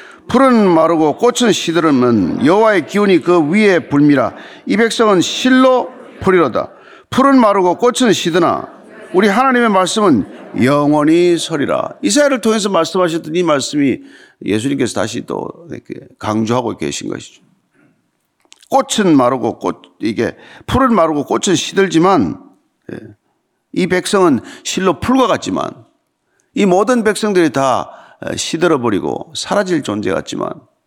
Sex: male